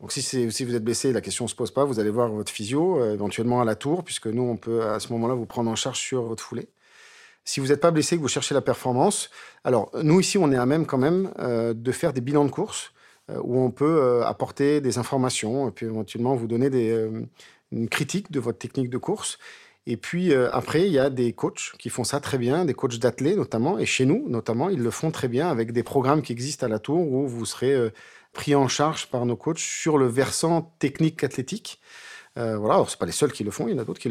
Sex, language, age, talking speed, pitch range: male, French, 40-59, 265 wpm, 115-150 Hz